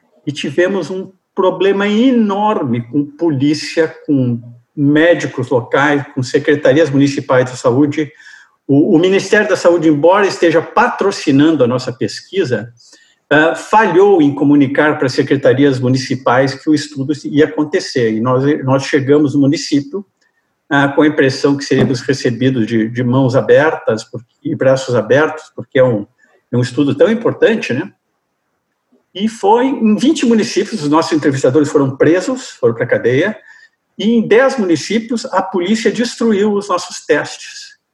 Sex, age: male, 50-69